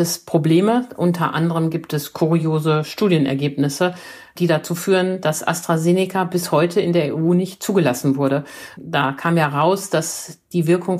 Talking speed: 145 wpm